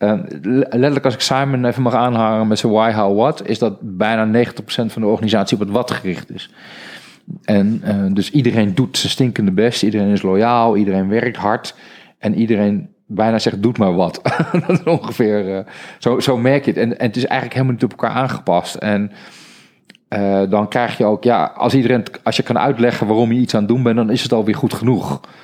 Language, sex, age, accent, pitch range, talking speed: Dutch, male, 40-59, Dutch, 105-130 Hz, 210 wpm